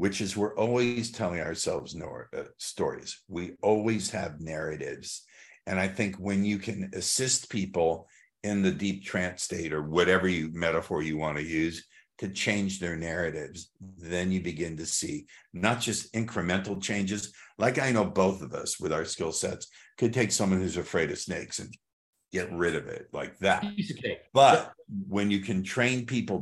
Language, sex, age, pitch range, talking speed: English, male, 60-79, 90-110 Hz, 170 wpm